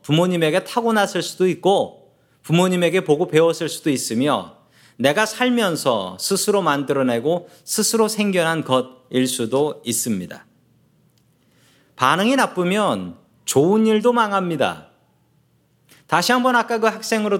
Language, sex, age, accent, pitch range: Korean, male, 40-59, native, 145-200 Hz